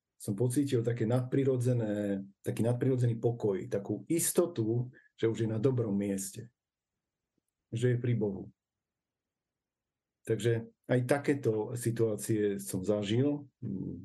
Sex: male